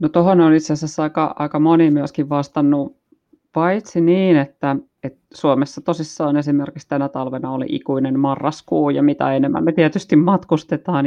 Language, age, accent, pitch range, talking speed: Finnish, 30-49, native, 140-155 Hz, 150 wpm